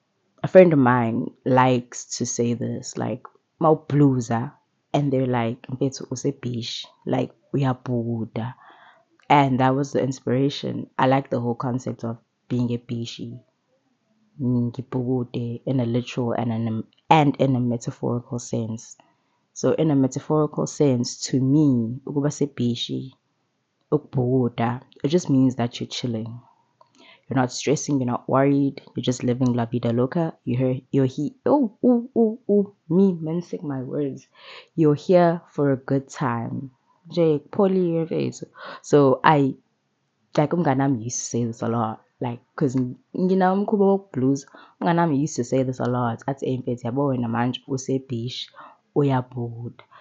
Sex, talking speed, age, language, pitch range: female, 125 wpm, 20-39, English, 120-145 Hz